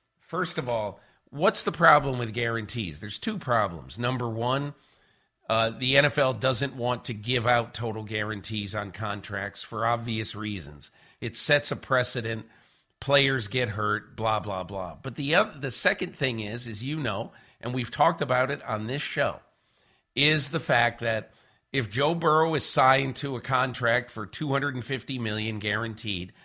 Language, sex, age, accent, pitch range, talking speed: English, male, 50-69, American, 110-140 Hz, 165 wpm